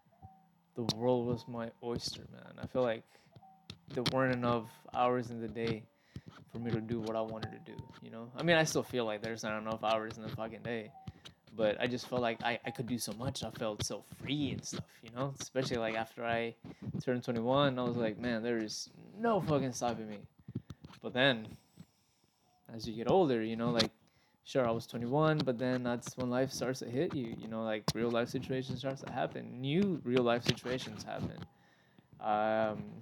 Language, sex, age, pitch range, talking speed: English, male, 20-39, 110-130 Hz, 200 wpm